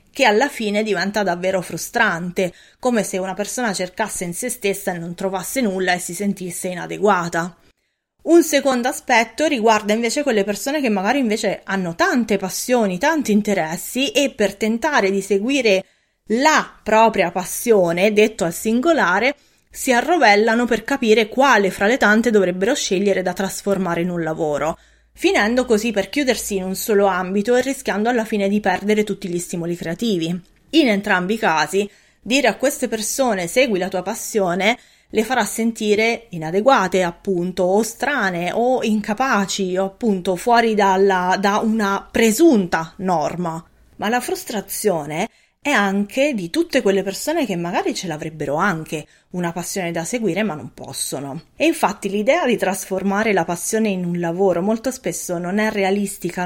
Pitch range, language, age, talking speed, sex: 185-225 Hz, Italian, 20-39, 155 wpm, female